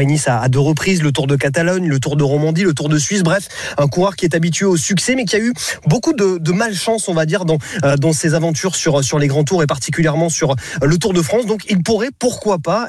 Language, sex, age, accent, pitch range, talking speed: French, male, 20-39, French, 135-170 Hz, 265 wpm